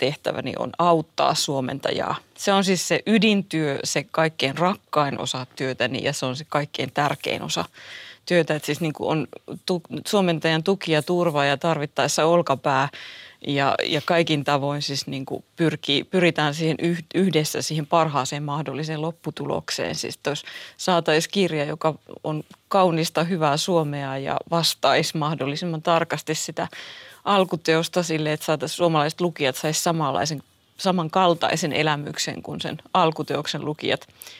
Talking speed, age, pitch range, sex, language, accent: 125 wpm, 30-49, 150-175 Hz, female, Finnish, native